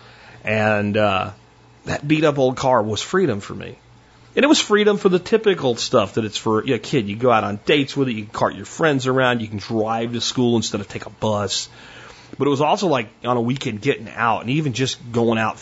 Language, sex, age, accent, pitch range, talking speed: English, male, 30-49, American, 105-125 Hz, 235 wpm